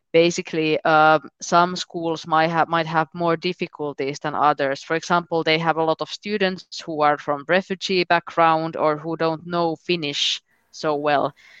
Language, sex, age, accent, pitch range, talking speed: Romanian, female, 20-39, Finnish, 150-175 Hz, 165 wpm